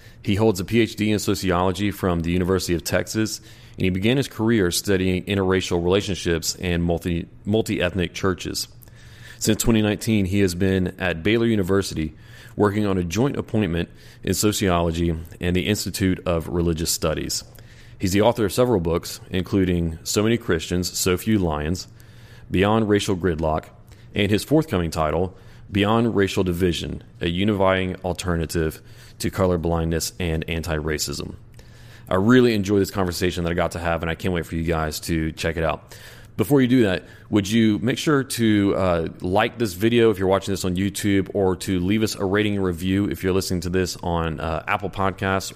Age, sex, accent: 30-49, male, American